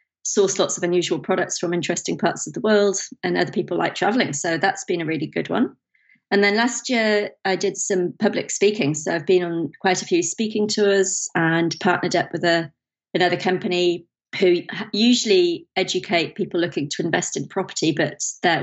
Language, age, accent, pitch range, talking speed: English, 30-49, British, 165-195 Hz, 190 wpm